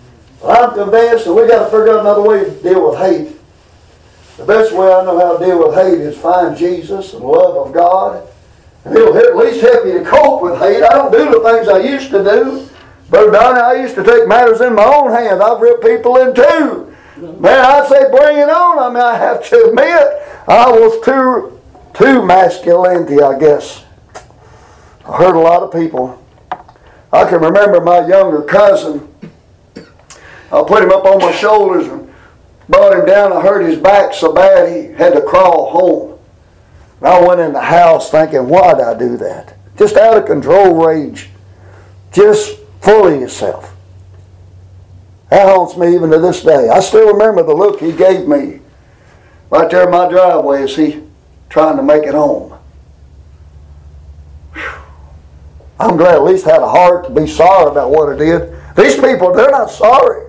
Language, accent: English, American